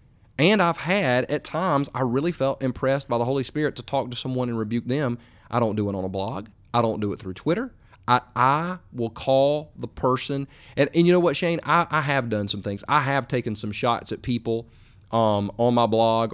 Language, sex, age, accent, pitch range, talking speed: English, male, 30-49, American, 105-130 Hz, 230 wpm